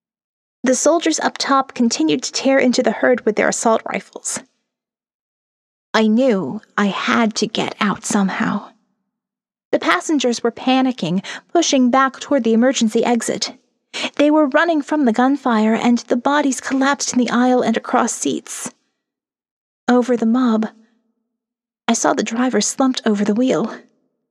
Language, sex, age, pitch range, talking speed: English, female, 30-49, 225-270 Hz, 145 wpm